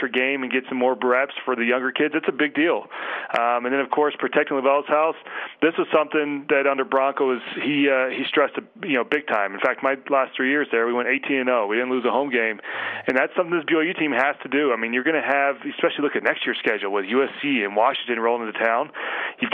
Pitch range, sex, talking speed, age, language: 120-145 Hz, male, 250 wpm, 30-49, English